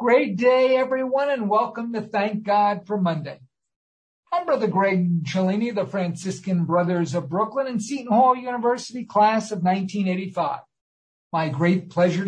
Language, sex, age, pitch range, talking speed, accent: English, male, 50-69, 170-220 Hz, 140 wpm, American